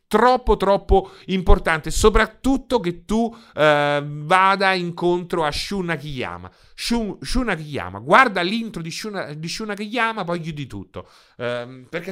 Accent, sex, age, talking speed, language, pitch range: native, male, 30-49, 120 wpm, Italian, 110-165 Hz